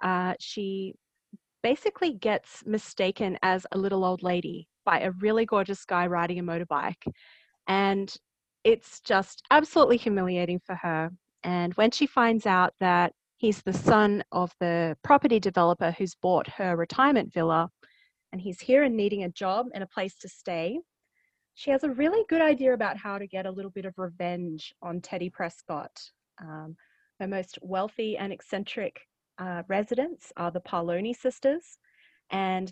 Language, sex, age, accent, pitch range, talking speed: English, female, 30-49, Australian, 180-235 Hz, 160 wpm